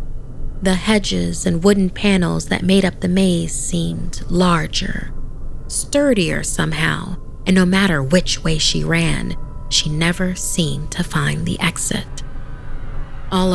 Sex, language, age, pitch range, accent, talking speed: female, English, 30-49, 150-185 Hz, American, 130 wpm